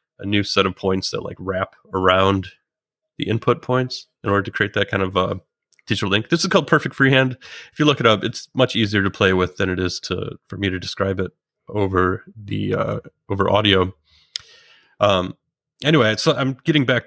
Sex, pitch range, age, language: male, 95-120 Hz, 30-49, English